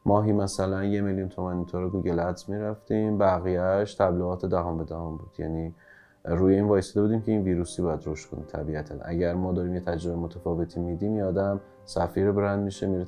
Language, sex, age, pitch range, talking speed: Persian, male, 30-49, 85-100 Hz, 185 wpm